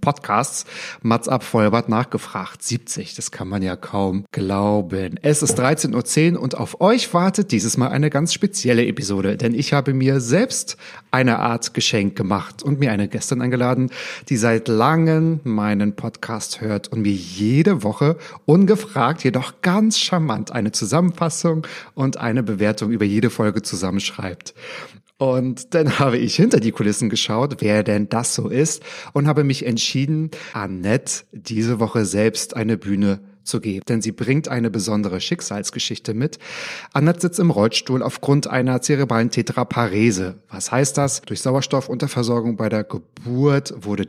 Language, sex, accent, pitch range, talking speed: German, male, German, 110-145 Hz, 150 wpm